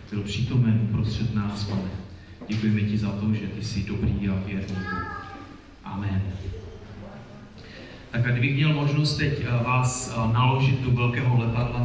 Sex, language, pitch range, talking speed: male, Czech, 105-120 Hz, 135 wpm